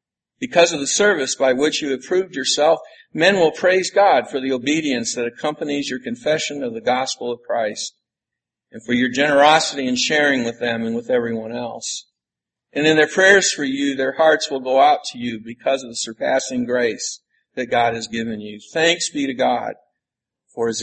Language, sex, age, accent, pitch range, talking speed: English, male, 50-69, American, 120-160 Hz, 195 wpm